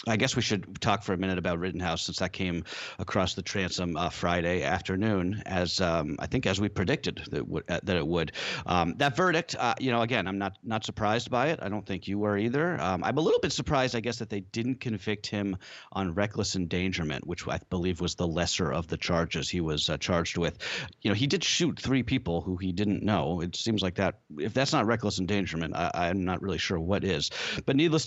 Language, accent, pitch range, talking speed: English, American, 95-125 Hz, 235 wpm